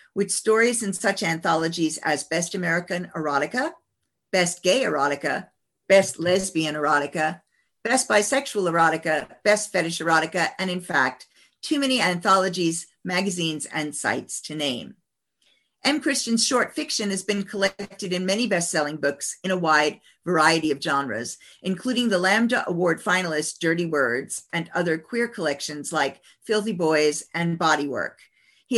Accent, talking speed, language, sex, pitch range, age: American, 140 wpm, English, female, 165-210 Hz, 50-69